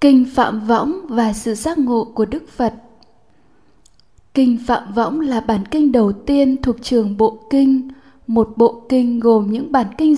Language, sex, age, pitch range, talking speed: Vietnamese, female, 10-29, 225-265 Hz, 170 wpm